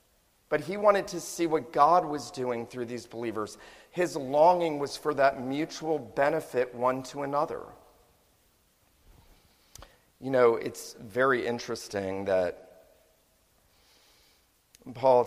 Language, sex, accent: English, male, American